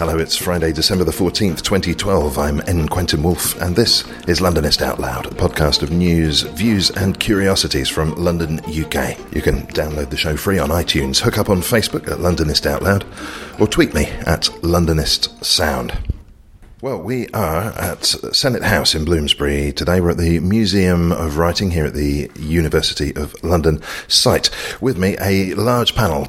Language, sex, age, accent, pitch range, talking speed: English, male, 40-59, British, 75-95 Hz, 175 wpm